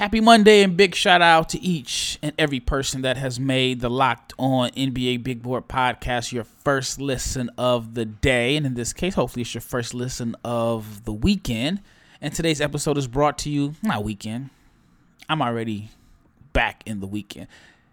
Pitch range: 120-155 Hz